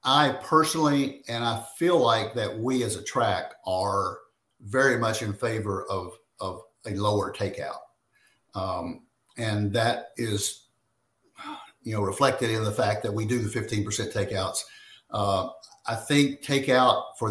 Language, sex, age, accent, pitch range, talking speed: English, male, 50-69, American, 110-130 Hz, 145 wpm